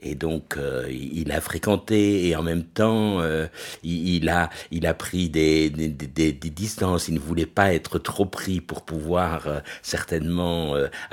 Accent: French